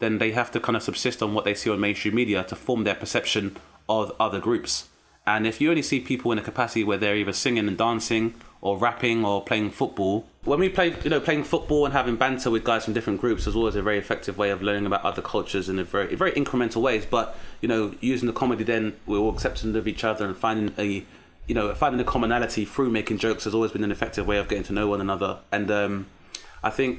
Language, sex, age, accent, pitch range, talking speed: English, male, 20-39, British, 100-115 Hz, 250 wpm